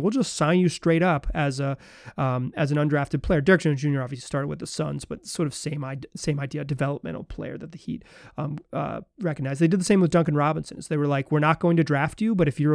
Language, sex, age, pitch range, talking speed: English, male, 30-49, 145-185 Hz, 265 wpm